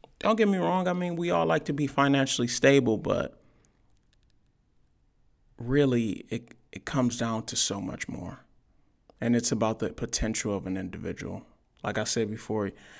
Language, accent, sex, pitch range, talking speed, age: English, American, male, 105-130 Hz, 160 wpm, 20-39